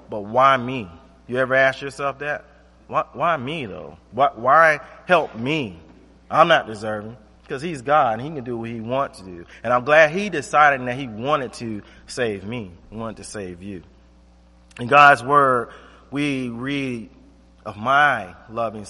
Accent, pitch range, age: American, 95-155 Hz, 30-49